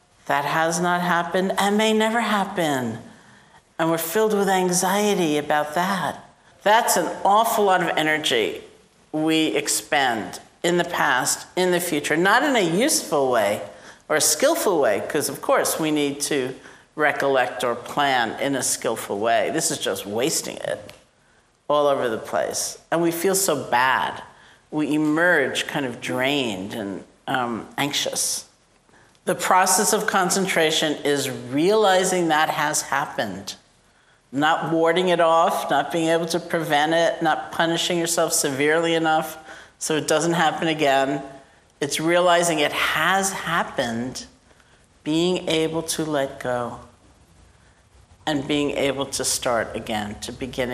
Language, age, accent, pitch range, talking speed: English, 50-69, American, 135-175 Hz, 140 wpm